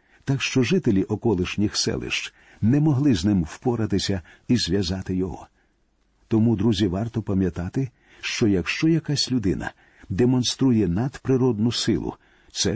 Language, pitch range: Ukrainian, 100-130 Hz